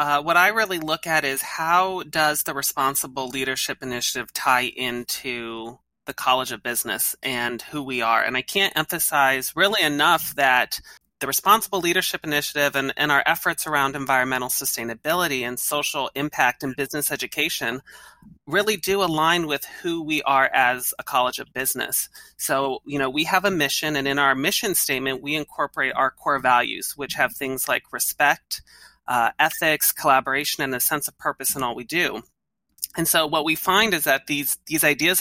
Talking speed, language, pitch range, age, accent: 175 wpm, English, 135-160 Hz, 30-49, American